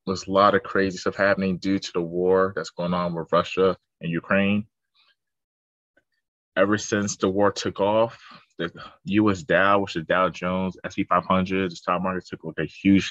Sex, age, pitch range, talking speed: male, 20-39, 90-105 Hz, 185 wpm